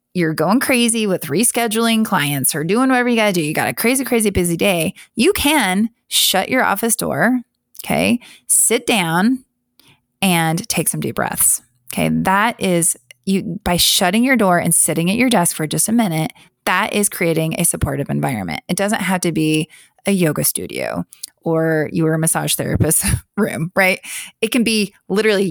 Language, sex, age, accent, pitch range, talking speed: English, female, 20-39, American, 160-220 Hz, 175 wpm